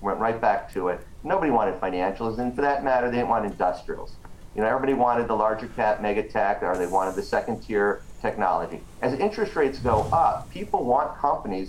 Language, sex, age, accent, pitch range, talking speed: English, male, 40-59, American, 110-135 Hz, 205 wpm